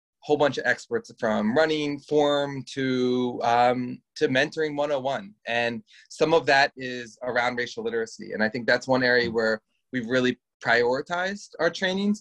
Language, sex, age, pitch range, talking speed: English, male, 20-39, 125-180 Hz, 155 wpm